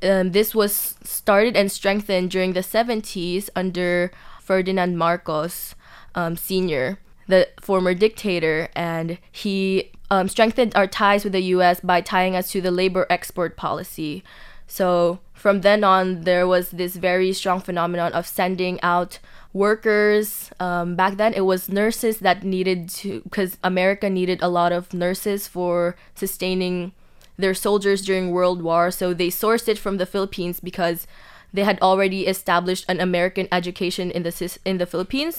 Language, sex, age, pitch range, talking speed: English, female, 10-29, 175-195 Hz, 155 wpm